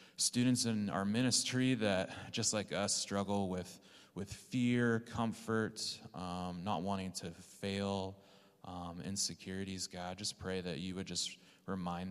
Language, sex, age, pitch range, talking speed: English, male, 30-49, 90-105 Hz, 140 wpm